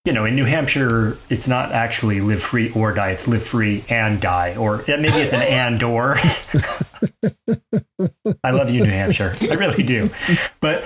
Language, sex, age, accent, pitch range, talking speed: English, male, 30-49, American, 110-135 Hz, 175 wpm